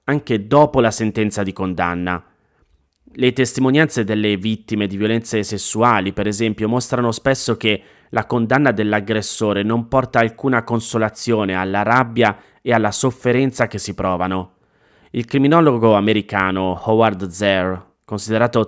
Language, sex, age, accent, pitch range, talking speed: Italian, male, 30-49, native, 105-125 Hz, 125 wpm